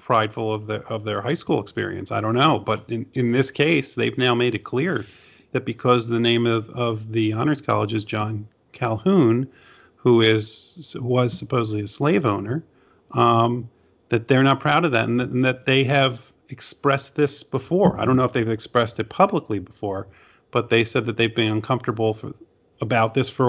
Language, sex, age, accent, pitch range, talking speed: English, male, 40-59, American, 110-130 Hz, 195 wpm